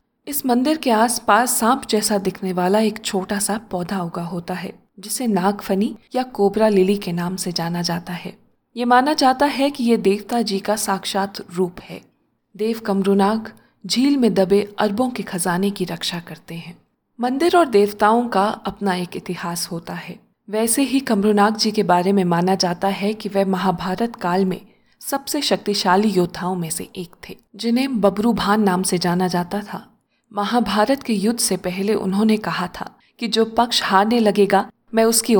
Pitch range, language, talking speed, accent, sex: 185-235 Hz, Hindi, 180 wpm, native, female